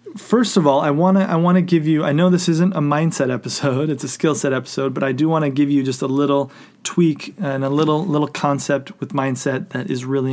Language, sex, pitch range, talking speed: English, male, 135-165 Hz, 255 wpm